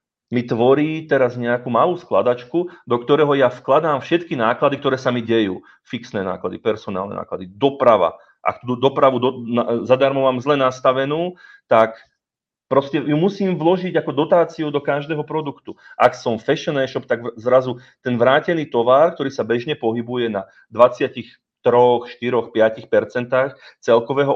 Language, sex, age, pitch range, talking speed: Czech, male, 30-49, 120-155 Hz, 150 wpm